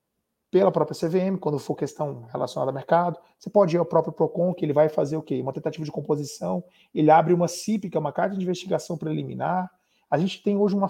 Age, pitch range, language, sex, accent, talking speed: 40-59, 165-225 Hz, Portuguese, male, Brazilian, 230 wpm